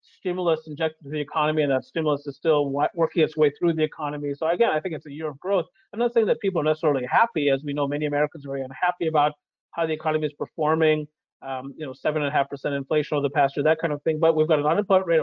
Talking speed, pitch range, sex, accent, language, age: 275 wpm, 150-190 Hz, male, American, English, 40-59